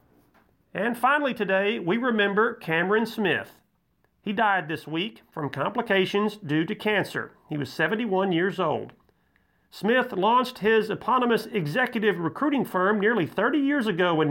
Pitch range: 170-220 Hz